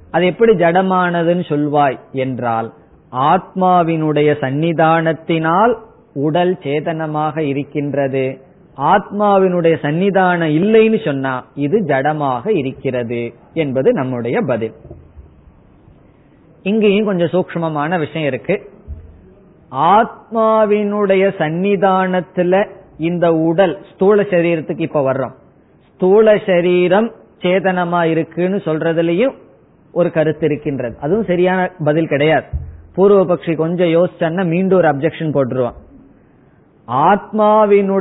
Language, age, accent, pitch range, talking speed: Tamil, 20-39, native, 150-190 Hz, 65 wpm